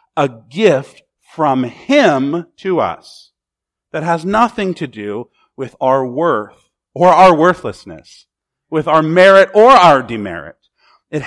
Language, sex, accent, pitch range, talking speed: English, male, American, 110-180 Hz, 130 wpm